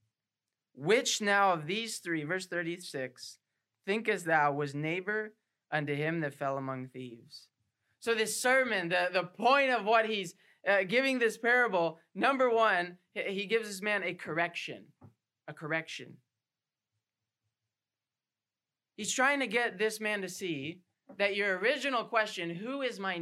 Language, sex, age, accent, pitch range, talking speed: English, male, 20-39, American, 150-220 Hz, 140 wpm